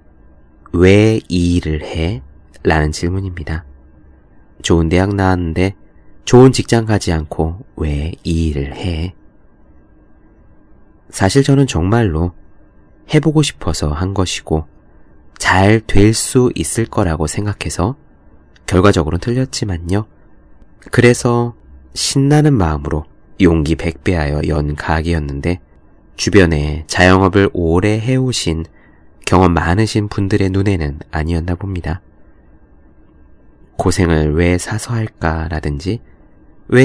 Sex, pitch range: male, 80-110 Hz